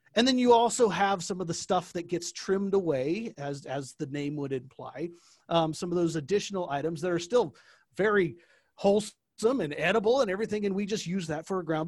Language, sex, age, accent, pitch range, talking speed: English, male, 40-59, American, 160-215 Hz, 205 wpm